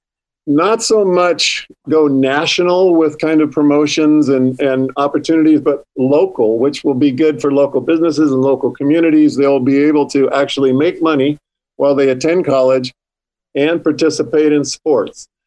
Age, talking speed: 50-69, 150 wpm